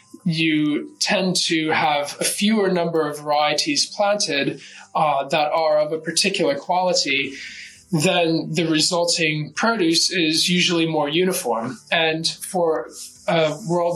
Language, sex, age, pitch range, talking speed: English, male, 20-39, 155-185 Hz, 125 wpm